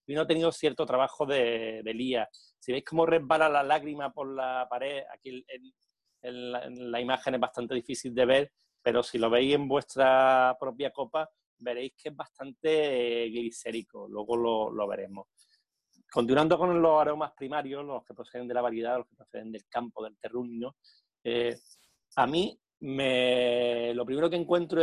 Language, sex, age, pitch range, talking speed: Spanish, male, 30-49, 120-155 Hz, 180 wpm